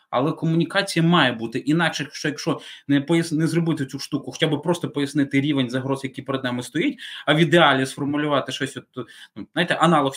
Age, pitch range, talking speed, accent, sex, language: 20-39, 140-185 Hz, 190 wpm, native, male, Ukrainian